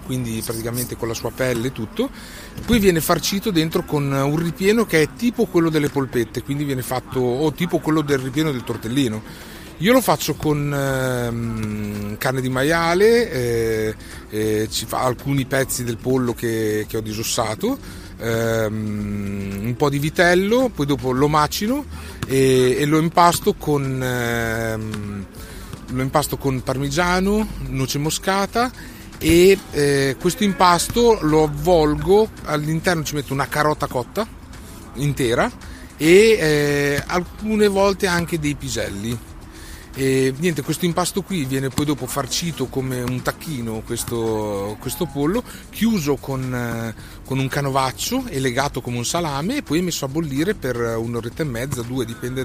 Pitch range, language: 120-160 Hz, Italian